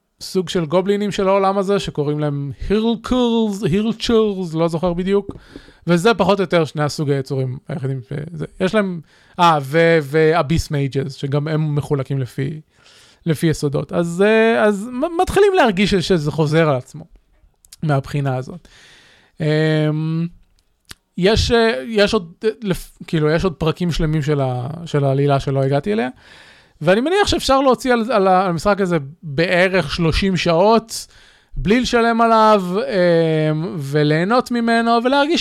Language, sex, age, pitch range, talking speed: Hebrew, male, 20-39, 150-210 Hz, 125 wpm